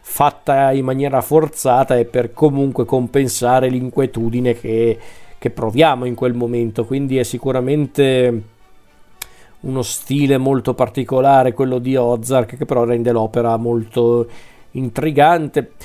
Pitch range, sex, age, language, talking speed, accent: 125-145 Hz, male, 40-59, Italian, 115 wpm, native